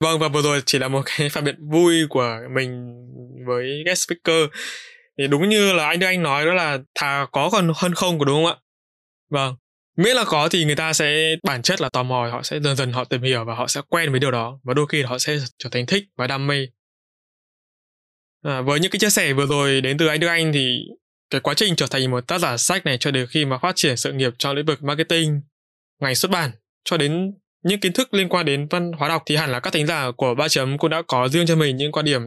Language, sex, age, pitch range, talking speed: Vietnamese, male, 20-39, 130-165 Hz, 260 wpm